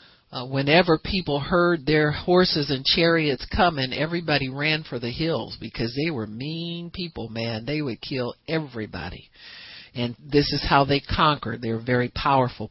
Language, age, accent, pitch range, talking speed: English, 50-69, American, 120-155 Hz, 155 wpm